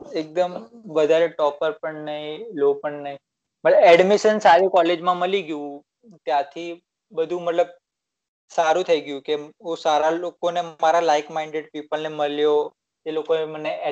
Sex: male